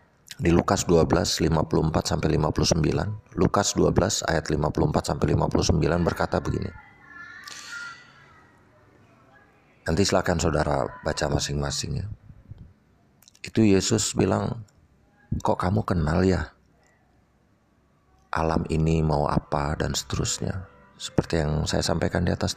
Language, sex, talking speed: Indonesian, male, 100 wpm